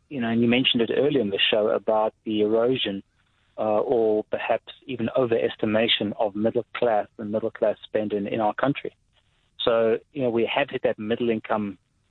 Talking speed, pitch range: 185 wpm, 110-125 Hz